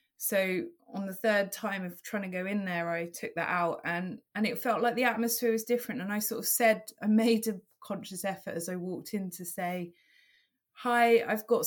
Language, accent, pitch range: English, British, 185-235 Hz